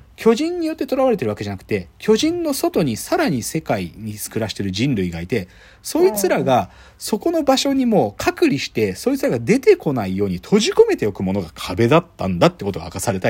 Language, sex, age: Japanese, male, 40-59